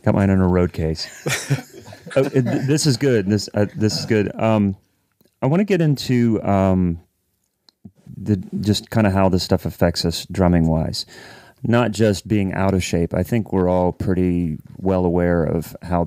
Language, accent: English, American